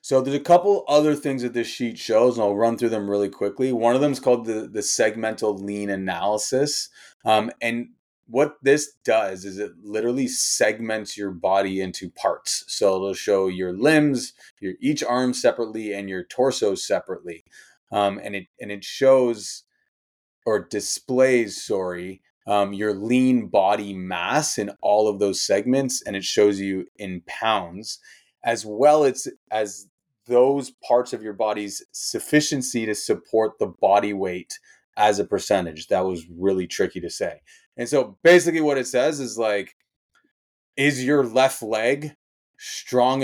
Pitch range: 100-135 Hz